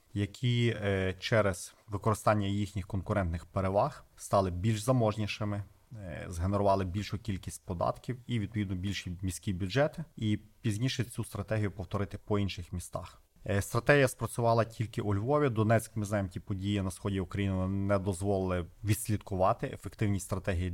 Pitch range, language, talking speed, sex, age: 95-115 Hz, Ukrainian, 125 wpm, male, 30-49